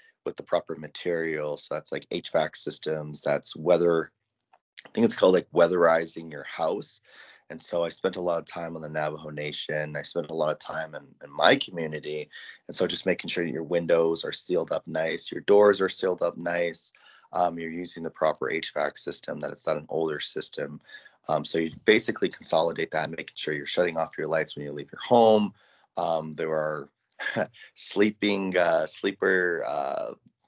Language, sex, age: English, male, 20-39